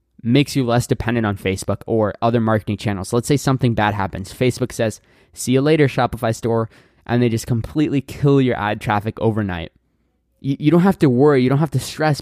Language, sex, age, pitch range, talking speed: English, male, 20-39, 110-135 Hz, 210 wpm